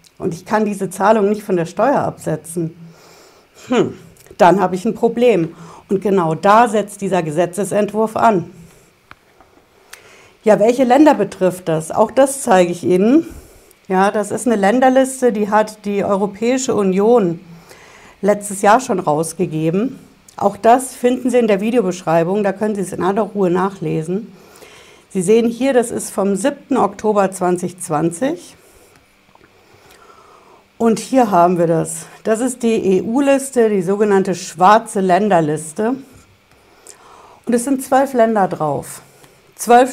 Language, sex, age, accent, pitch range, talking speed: German, female, 60-79, German, 180-240 Hz, 135 wpm